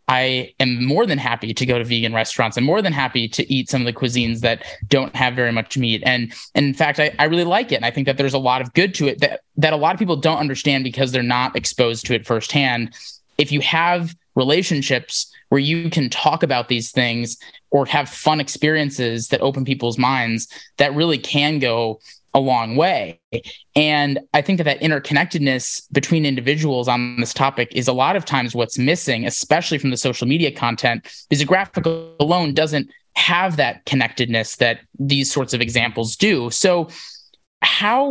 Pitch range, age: 125-155 Hz, 20-39